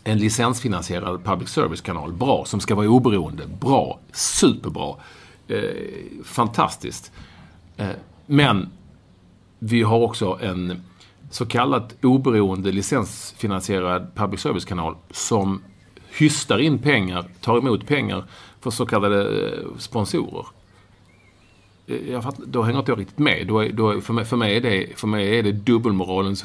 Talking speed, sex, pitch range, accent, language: 140 wpm, male, 95-120 Hz, Norwegian, English